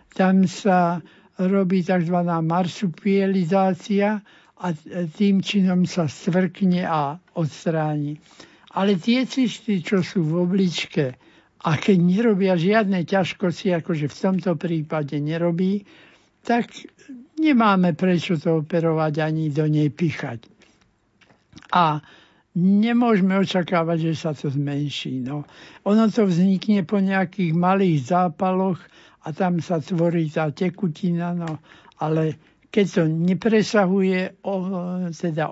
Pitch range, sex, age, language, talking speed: 165-195 Hz, male, 60-79, Slovak, 110 wpm